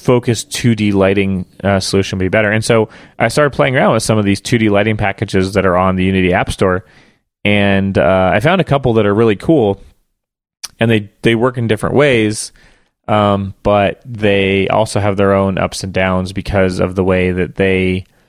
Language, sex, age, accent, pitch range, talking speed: English, male, 30-49, American, 95-110 Hz, 195 wpm